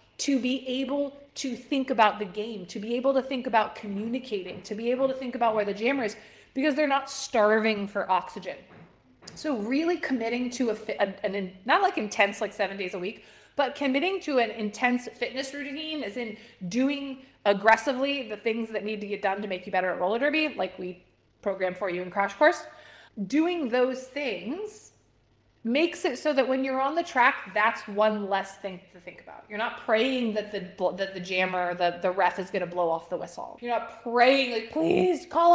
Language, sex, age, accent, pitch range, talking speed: English, female, 20-39, American, 210-295 Hz, 205 wpm